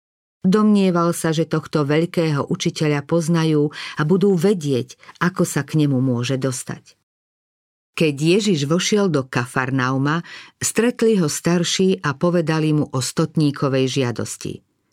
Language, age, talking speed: Slovak, 50-69, 120 wpm